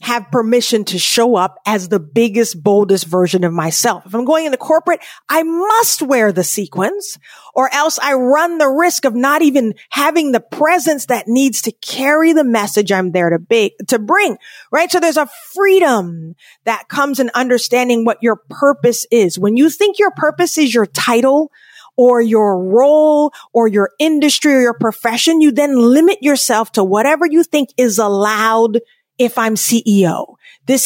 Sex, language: female, English